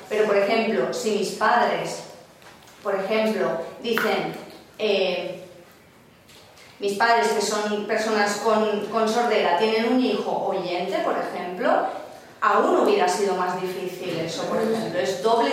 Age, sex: 30-49, female